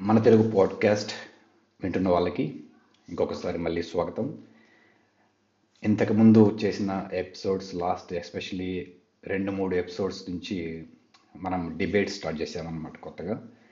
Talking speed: 95 wpm